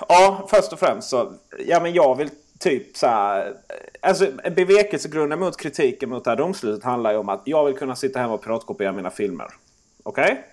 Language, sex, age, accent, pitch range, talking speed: Swedish, male, 30-49, native, 130-180 Hz, 195 wpm